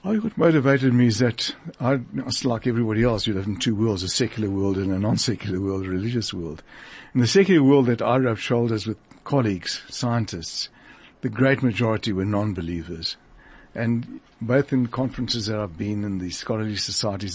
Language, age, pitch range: English, 60-79, 100-125 Hz